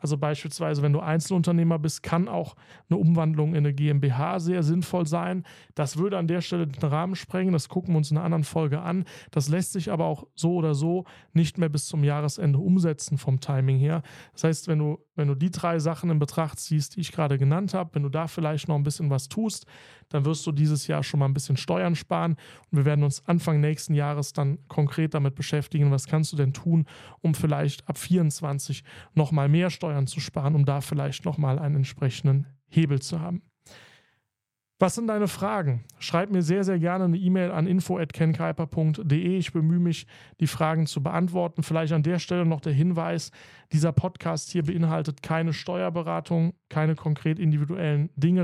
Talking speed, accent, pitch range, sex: 195 wpm, German, 145-170 Hz, male